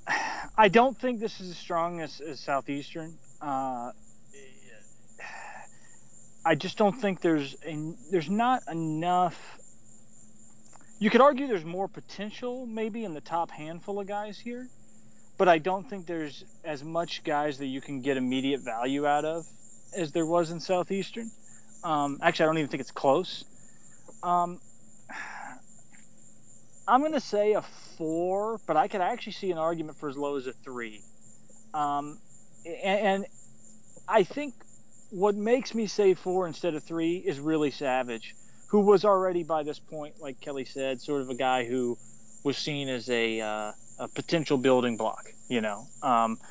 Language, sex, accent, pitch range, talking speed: English, male, American, 135-195 Hz, 160 wpm